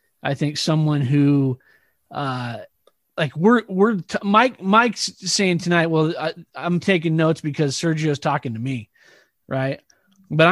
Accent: American